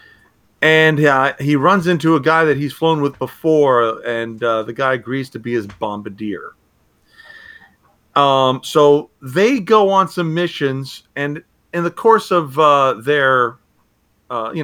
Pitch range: 130-185 Hz